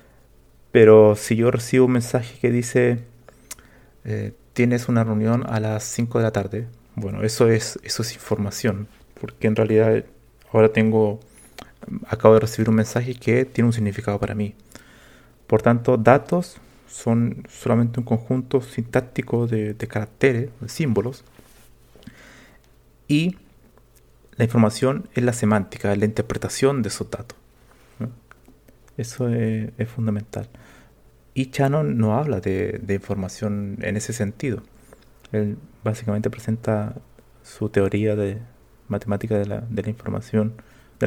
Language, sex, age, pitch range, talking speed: Spanish, male, 30-49, 105-120 Hz, 135 wpm